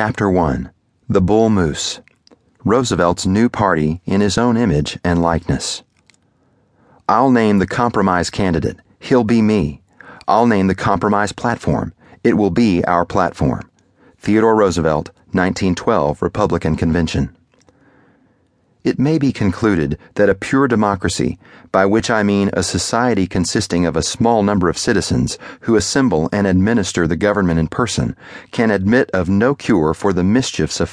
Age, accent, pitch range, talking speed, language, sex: 40-59, American, 85-115 Hz, 145 wpm, English, male